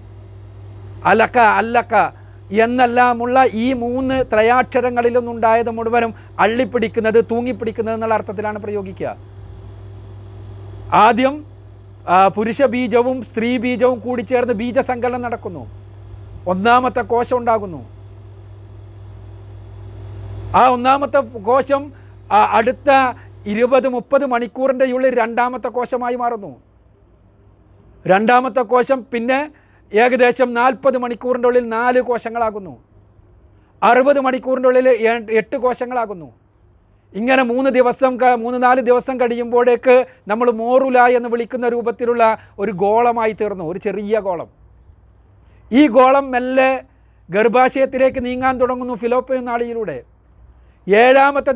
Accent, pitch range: native, 175-255 Hz